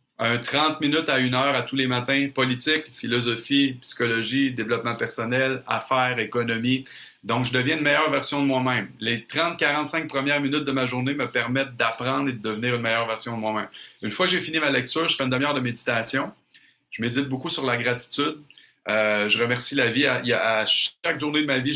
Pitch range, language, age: 120-140 Hz, French, 40-59